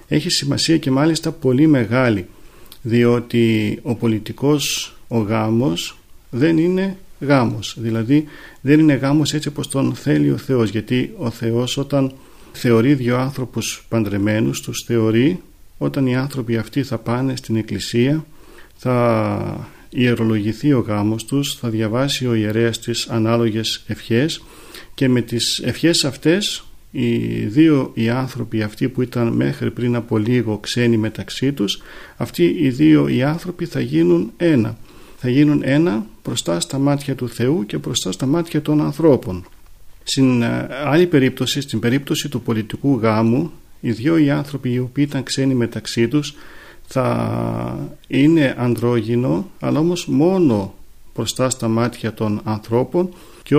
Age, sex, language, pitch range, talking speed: 40-59, male, Greek, 115-145 Hz, 140 wpm